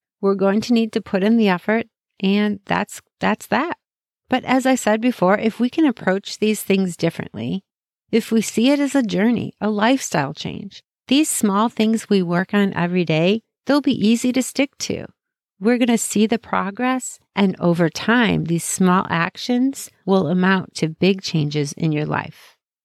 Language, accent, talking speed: English, American, 180 wpm